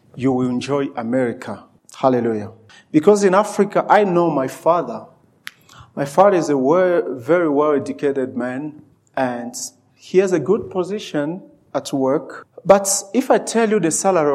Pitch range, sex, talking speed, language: 125-160 Hz, male, 140 wpm, English